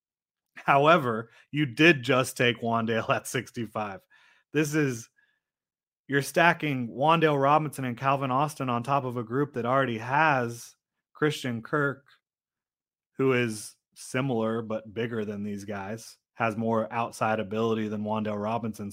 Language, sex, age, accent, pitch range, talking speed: English, male, 30-49, American, 115-135 Hz, 135 wpm